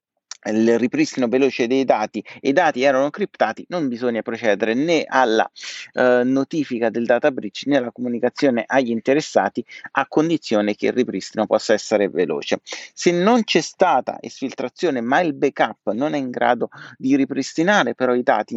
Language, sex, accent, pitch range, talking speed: Italian, male, native, 120-150 Hz, 160 wpm